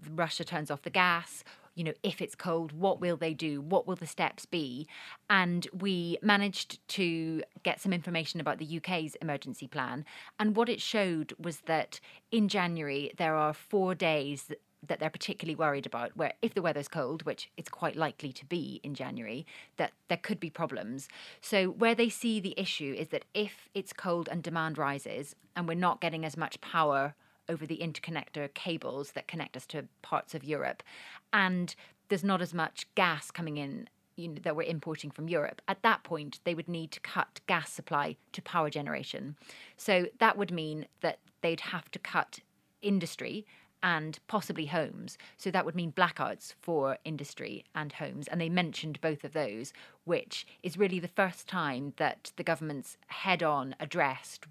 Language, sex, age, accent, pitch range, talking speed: English, female, 30-49, British, 150-185 Hz, 180 wpm